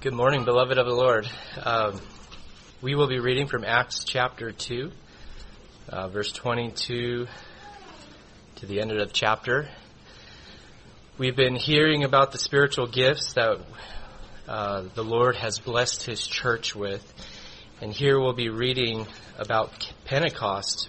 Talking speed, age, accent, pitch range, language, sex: 130 wpm, 30-49, American, 105-135 Hz, English, male